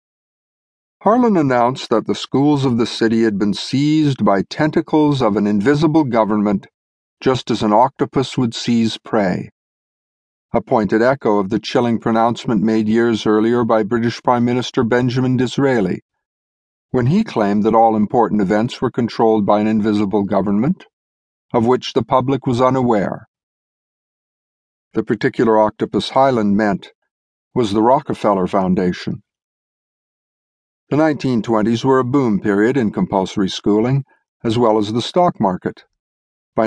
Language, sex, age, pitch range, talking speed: English, male, 50-69, 105-130 Hz, 135 wpm